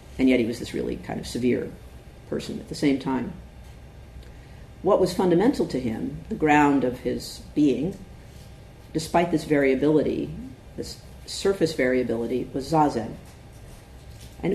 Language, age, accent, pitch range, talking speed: English, 50-69, American, 130-175 Hz, 135 wpm